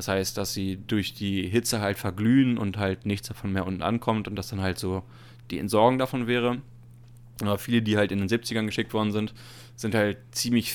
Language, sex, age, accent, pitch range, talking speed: German, male, 20-39, German, 100-120 Hz, 210 wpm